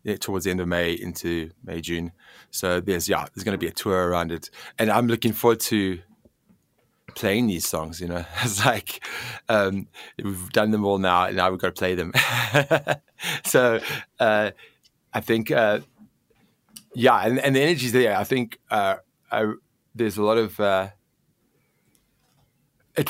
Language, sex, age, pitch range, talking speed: English, male, 30-49, 95-120 Hz, 170 wpm